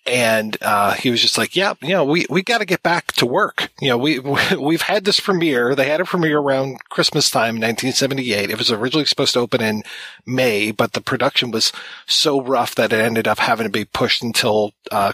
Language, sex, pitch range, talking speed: English, male, 115-140 Hz, 220 wpm